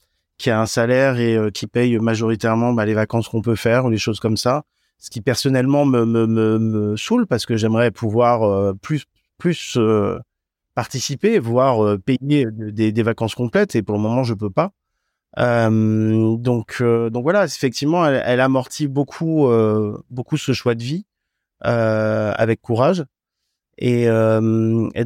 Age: 30-49